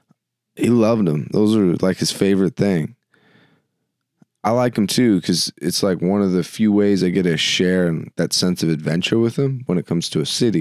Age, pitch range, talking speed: 20-39, 85-115 Hz, 210 wpm